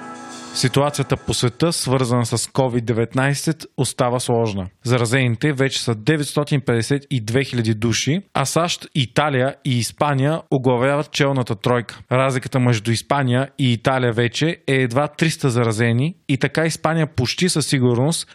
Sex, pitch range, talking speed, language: male, 120-145 Hz, 125 wpm, Bulgarian